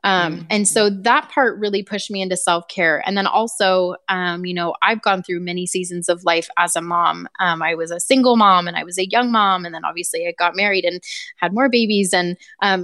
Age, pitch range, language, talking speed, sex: 20-39, 175-200 Hz, English, 240 wpm, female